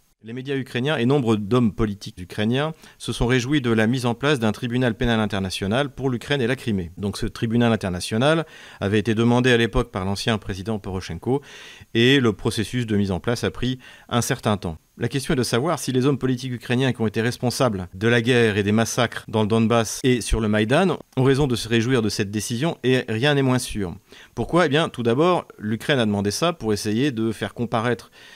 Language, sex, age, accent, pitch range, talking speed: French, male, 40-59, French, 105-130 Hz, 220 wpm